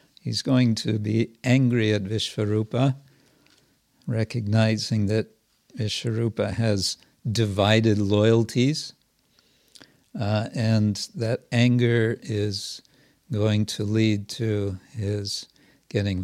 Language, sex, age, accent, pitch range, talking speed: English, male, 60-79, American, 105-125 Hz, 90 wpm